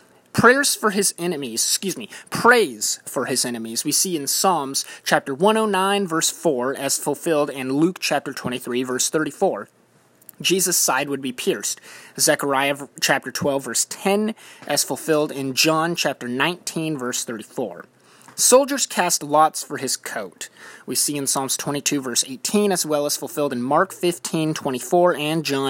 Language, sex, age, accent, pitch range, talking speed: English, male, 30-49, American, 135-170 Hz, 155 wpm